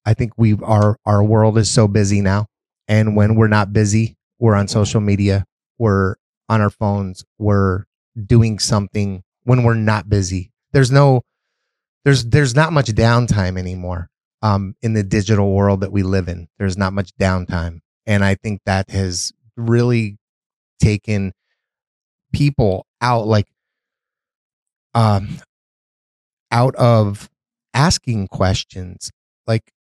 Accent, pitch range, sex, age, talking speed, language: American, 100-125 Hz, male, 30-49, 135 wpm, English